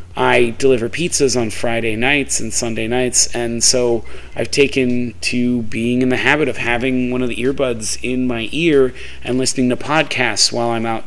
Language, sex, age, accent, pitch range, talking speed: English, male, 30-49, American, 90-125 Hz, 185 wpm